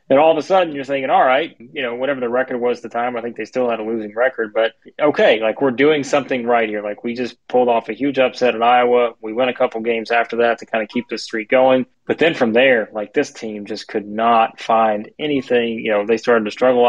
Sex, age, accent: male, 20-39, American